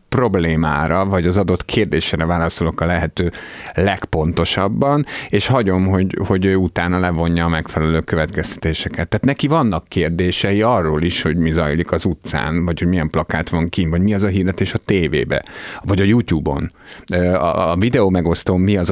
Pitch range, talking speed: 85-105 Hz, 160 wpm